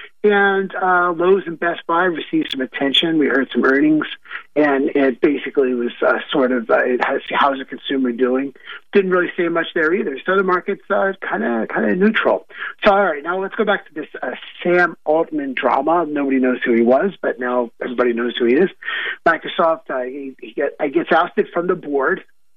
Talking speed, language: 205 wpm, English